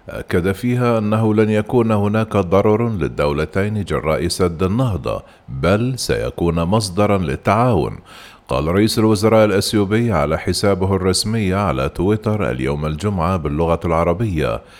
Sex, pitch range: male, 85-110 Hz